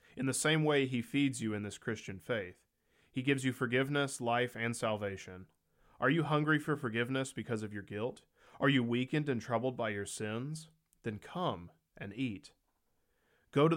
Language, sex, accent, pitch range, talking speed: English, male, American, 105-130 Hz, 180 wpm